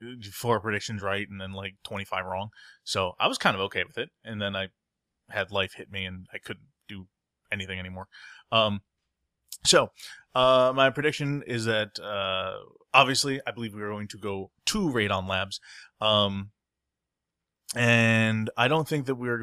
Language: English